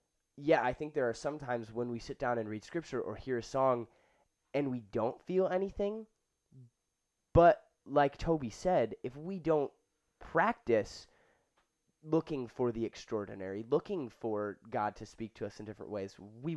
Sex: male